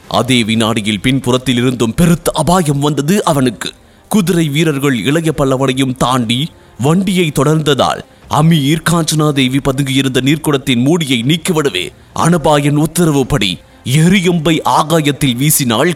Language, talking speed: English, 100 wpm